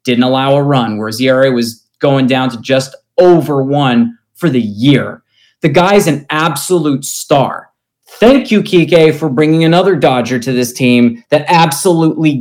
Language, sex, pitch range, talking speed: English, male, 130-170 Hz, 160 wpm